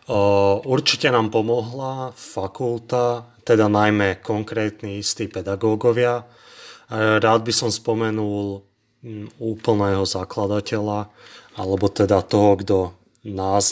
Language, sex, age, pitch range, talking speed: Slovak, male, 30-49, 100-115 Hz, 90 wpm